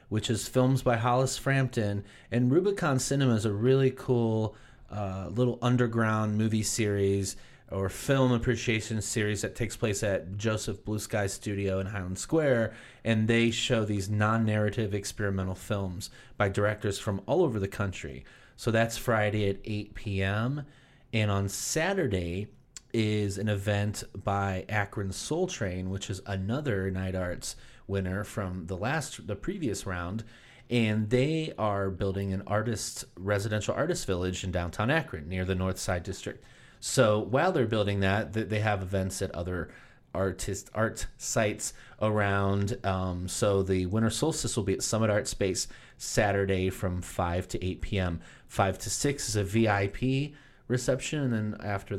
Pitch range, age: 95-120 Hz, 30-49